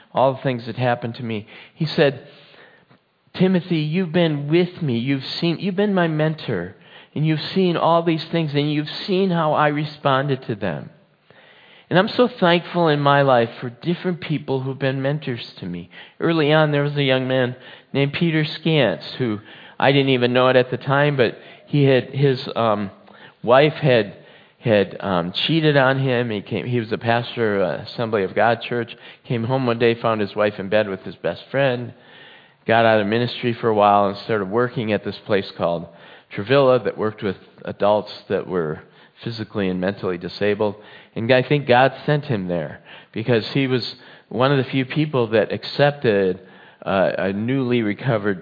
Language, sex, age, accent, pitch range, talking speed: English, male, 40-59, American, 105-145 Hz, 185 wpm